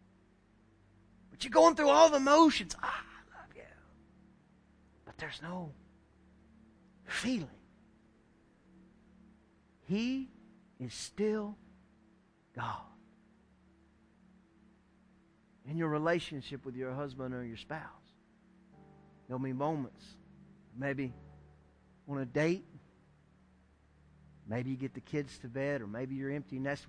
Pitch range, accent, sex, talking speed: 125-185 Hz, American, male, 100 wpm